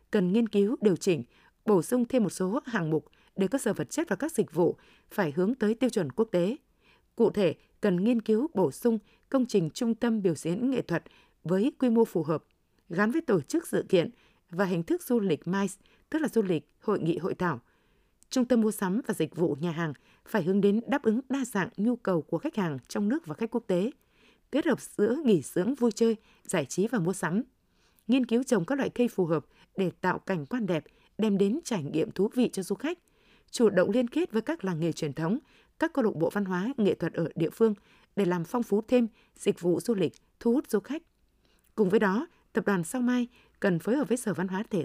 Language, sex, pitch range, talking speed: Vietnamese, female, 180-240 Hz, 240 wpm